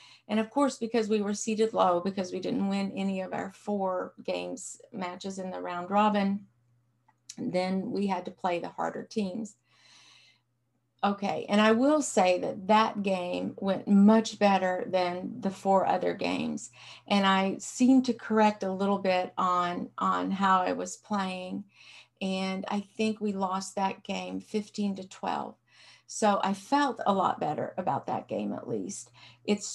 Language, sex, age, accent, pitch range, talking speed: English, female, 50-69, American, 175-210 Hz, 165 wpm